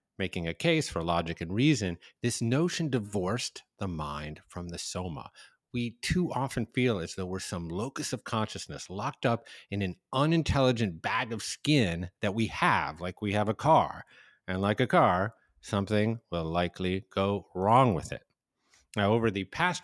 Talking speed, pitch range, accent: 170 wpm, 95-135 Hz, American